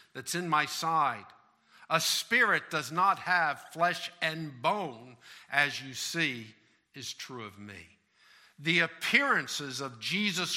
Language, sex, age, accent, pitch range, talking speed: English, male, 50-69, American, 110-160 Hz, 130 wpm